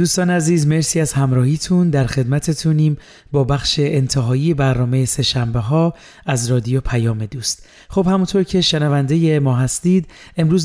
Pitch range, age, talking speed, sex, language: 130-155 Hz, 30-49, 135 wpm, male, Persian